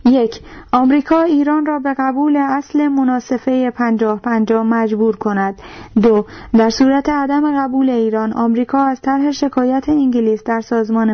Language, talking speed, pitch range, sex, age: Persian, 135 wpm, 225-265 Hz, female, 30-49